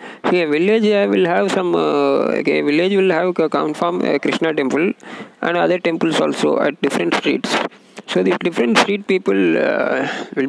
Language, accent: Tamil, native